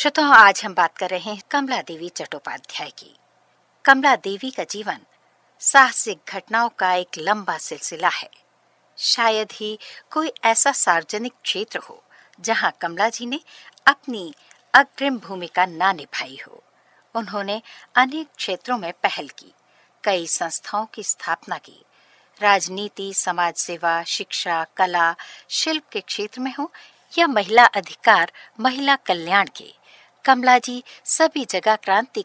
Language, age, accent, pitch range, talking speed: Hindi, 50-69, native, 190-265 Hz, 130 wpm